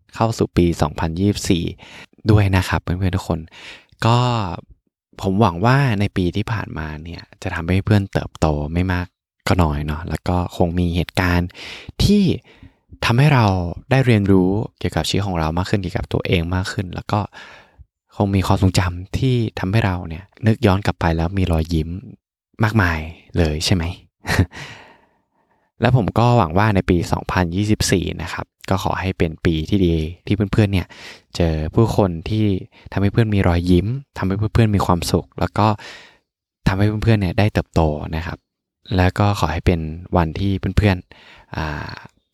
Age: 20-39